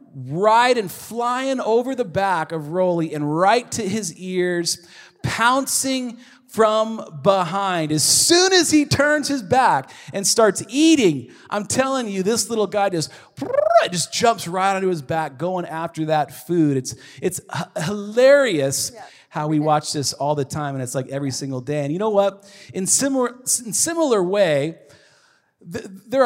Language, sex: English, male